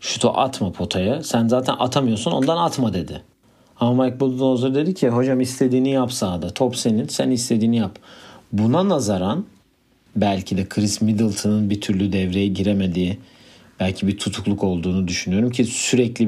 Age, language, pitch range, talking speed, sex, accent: 50-69, Turkish, 100-130 Hz, 145 wpm, male, native